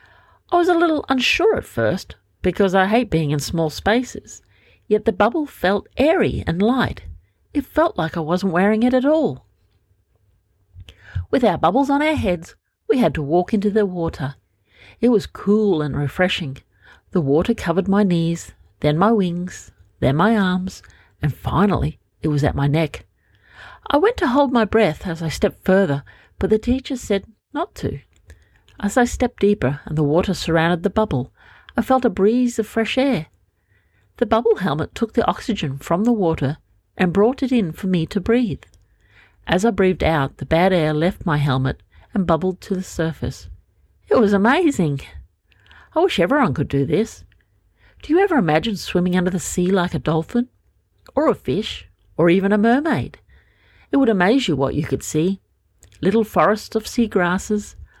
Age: 50-69